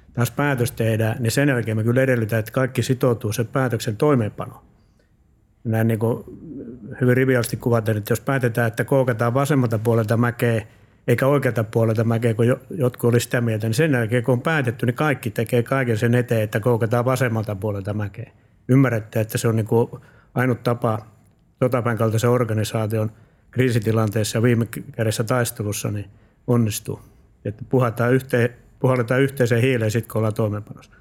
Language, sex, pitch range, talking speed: Finnish, male, 110-125 Hz, 155 wpm